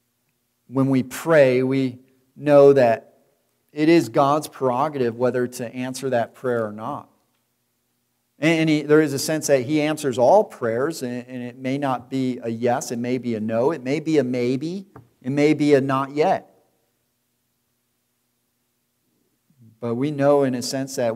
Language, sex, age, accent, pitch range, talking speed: English, male, 40-59, American, 120-135 Hz, 160 wpm